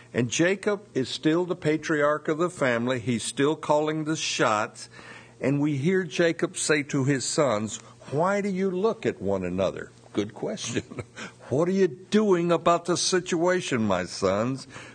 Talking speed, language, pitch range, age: 160 wpm, English, 120-170 Hz, 60-79